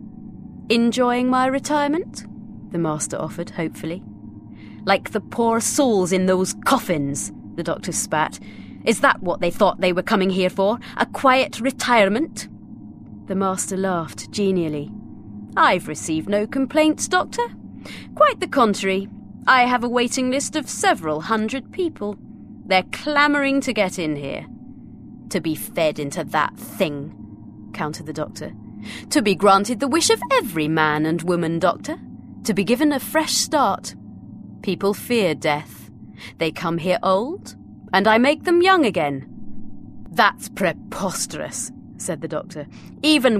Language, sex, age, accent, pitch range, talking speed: English, female, 30-49, British, 160-260 Hz, 140 wpm